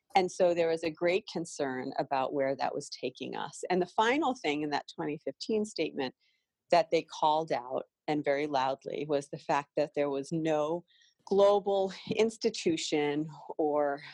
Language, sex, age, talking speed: English, female, 40-59, 160 wpm